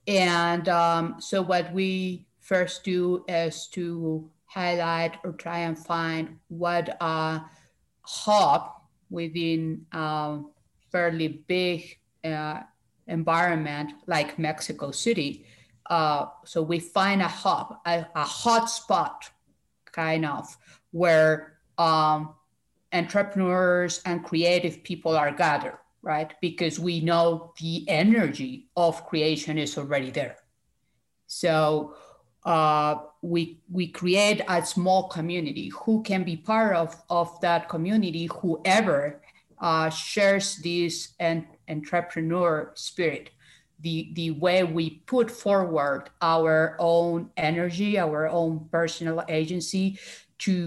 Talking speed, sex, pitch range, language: 110 wpm, female, 160-180 Hz, English